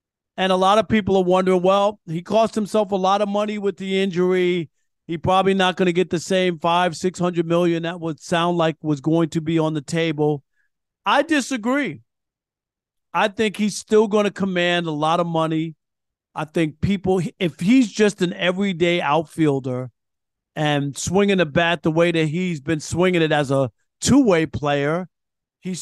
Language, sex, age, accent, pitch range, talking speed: English, male, 40-59, American, 150-185 Hz, 185 wpm